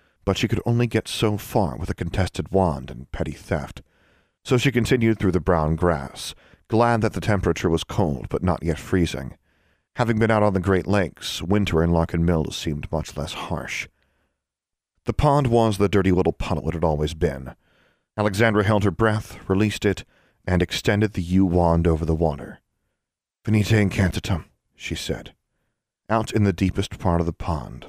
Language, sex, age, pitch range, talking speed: English, male, 40-59, 80-105 Hz, 180 wpm